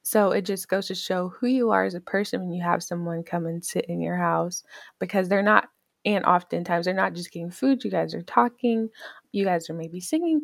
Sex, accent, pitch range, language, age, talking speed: female, American, 170-210 Hz, English, 20-39, 235 wpm